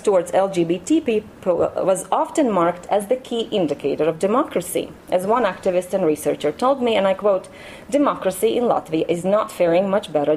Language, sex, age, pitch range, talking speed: English, female, 30-49, 175-255 Hz, 175 wpm